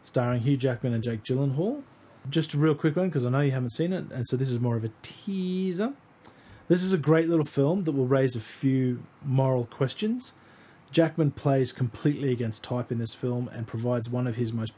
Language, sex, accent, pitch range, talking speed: English, male, Australian, 120-150 Hz, 215 wpm